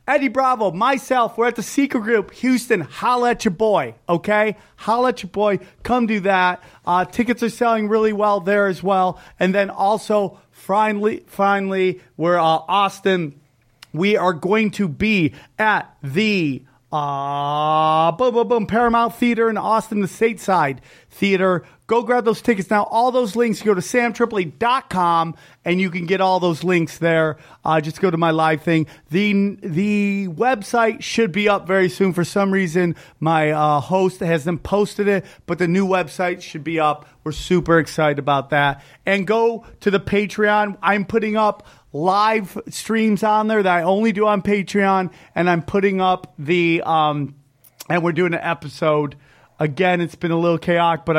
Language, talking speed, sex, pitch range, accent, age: English, 175 wpm, male, 165-210 Hz, American, 30-49